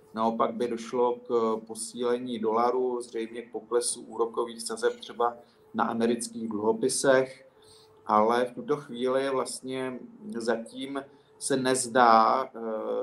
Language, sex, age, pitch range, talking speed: Czech, male, 40-59, 115-130 Hz, 100 wpm